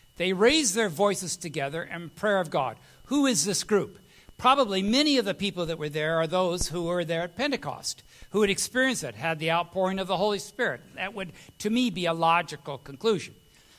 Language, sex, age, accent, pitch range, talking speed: English, male, 60-79, American, 165-240 Hz, 205 wpm